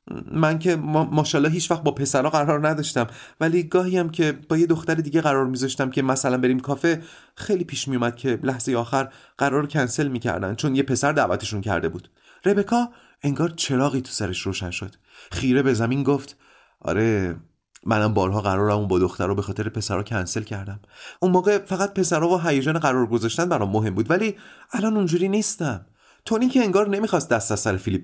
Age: 30-49